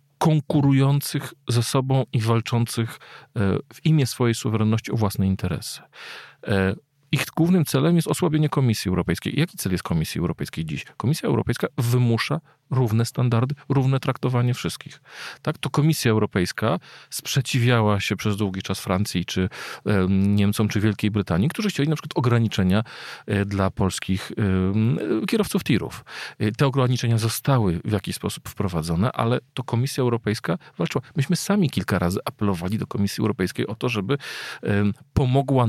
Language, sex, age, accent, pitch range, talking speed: Polish, male, 40-59, native, 105-135 Hz, 135 wpm